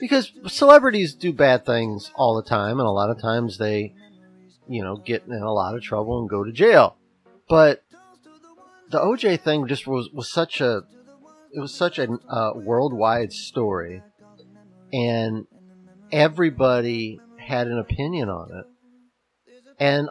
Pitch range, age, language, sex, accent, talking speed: 115-190 Hz, 40-59, English, male, American, 145 wpm